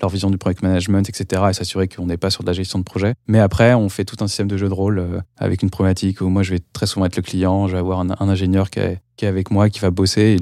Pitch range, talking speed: 95-110 Hz, 330 wpm